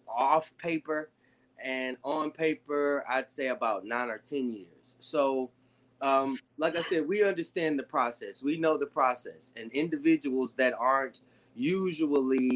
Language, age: English, 20-39